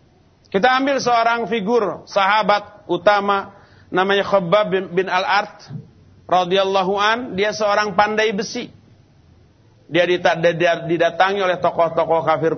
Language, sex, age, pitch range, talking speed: Malay, male, 40-59, 160-210 Hz, 95 wpm